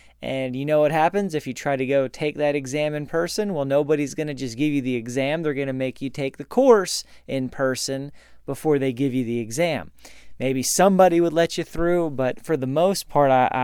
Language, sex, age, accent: English, male, 30-49, American